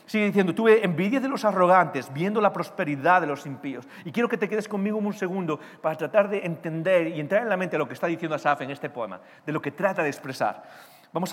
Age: 40-59